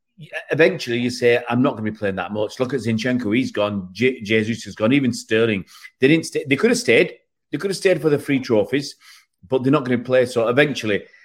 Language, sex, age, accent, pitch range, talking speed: English, male, 30-49, British, 100-130 Hz, 240 wpm